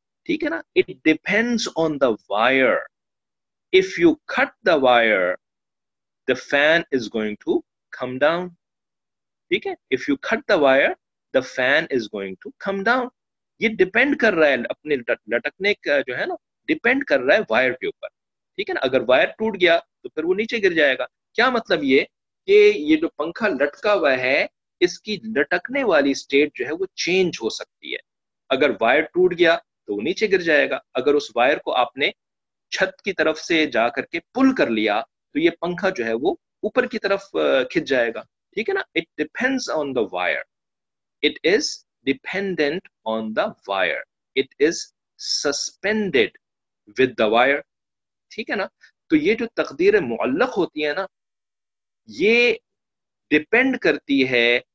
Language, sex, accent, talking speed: English, male, Indian, 150 wpm